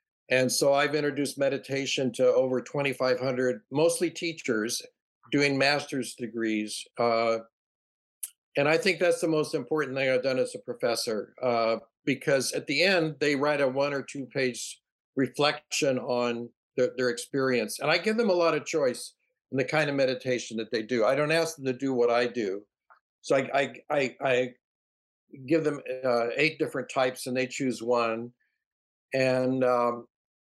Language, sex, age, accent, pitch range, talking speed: English, male, 60-79, American, 125-150 Hz, 170 wpm